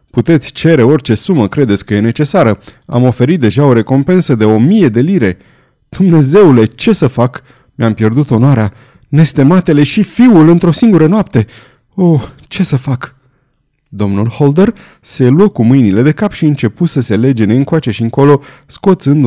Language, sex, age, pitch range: Romanian, male, 30-49, 115-160 Hz